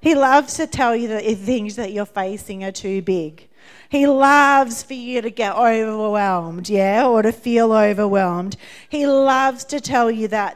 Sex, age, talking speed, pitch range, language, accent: female, 30-49, 180 wpm, 200-250 Hz, English, Australian